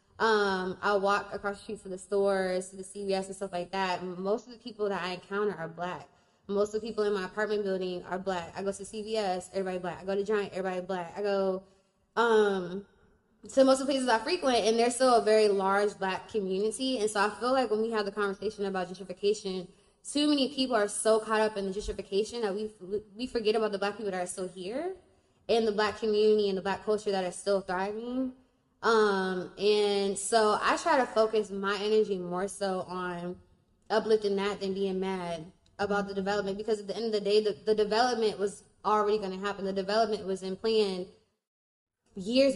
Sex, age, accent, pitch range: female, 10-29, American, 195-220 Hz